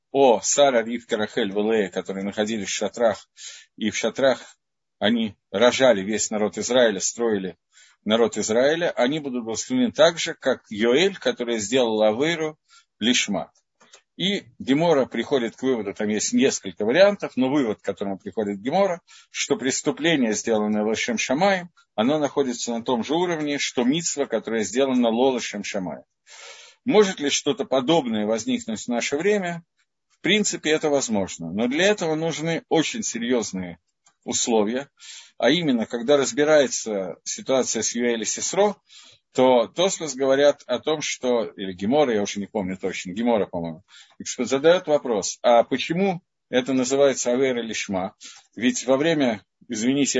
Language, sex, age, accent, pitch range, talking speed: Russian, male, 50-69, native, 115-165 Hz, 140 wpm